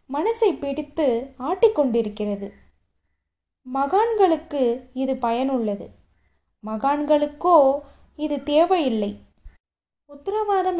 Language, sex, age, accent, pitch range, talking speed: Tamil, female, 20-39, native, 235-325 Hz, 60 wpm